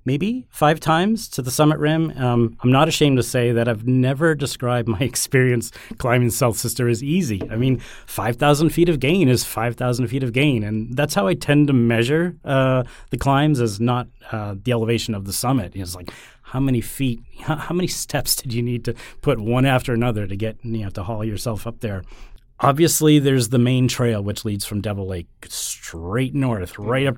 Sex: male